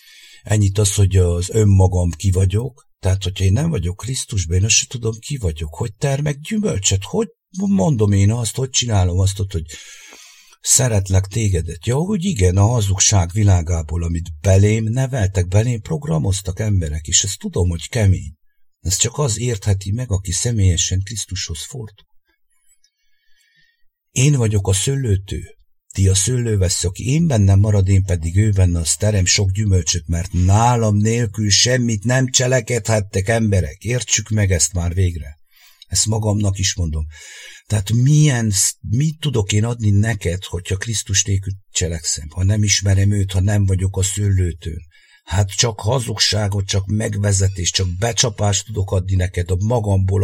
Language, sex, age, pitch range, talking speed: English, male, 60-79, 95-115 Hz, 145 wpm